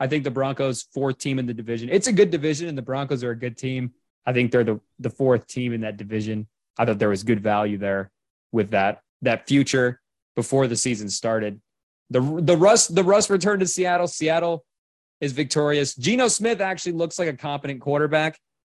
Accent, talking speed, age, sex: American, 205 wpm, 20-39, male